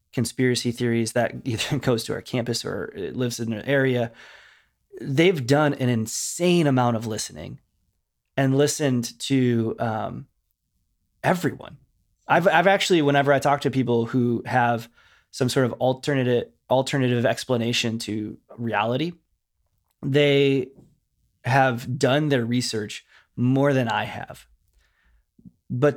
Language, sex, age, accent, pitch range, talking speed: English, male, 20-39, American, 120-145 Hz, 120 wpm